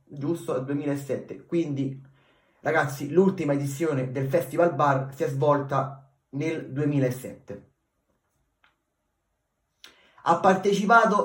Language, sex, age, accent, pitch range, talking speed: Italian, male, 30-49, native, 130-175 Hz, 90 wpm